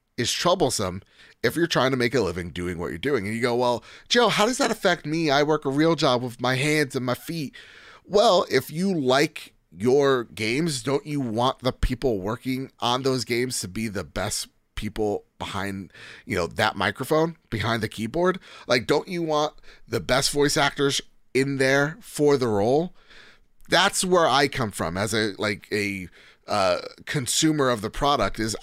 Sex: male